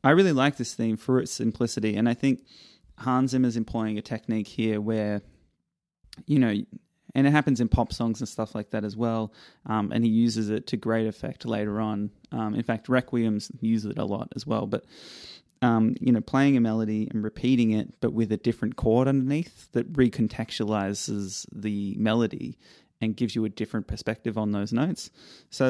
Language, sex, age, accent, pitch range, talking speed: English, male, 20-39, Australian, 105-120 Hz, 190 wpm